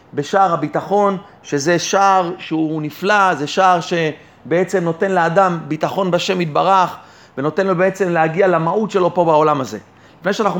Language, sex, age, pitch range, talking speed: Hebrew, male, 30-49, 170-205 Hz, 140 wpm